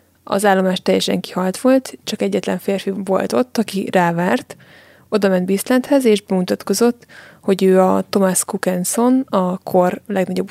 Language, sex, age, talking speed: Hungarian, female, 20-39, 145 wpm